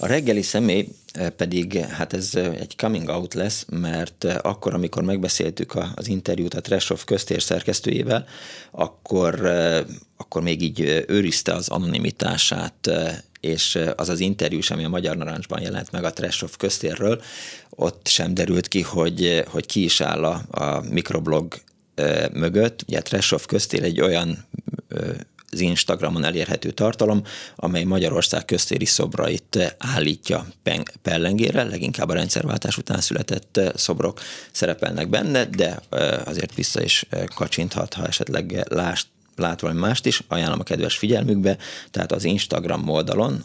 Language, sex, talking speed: Hungarian, male, 130 wpm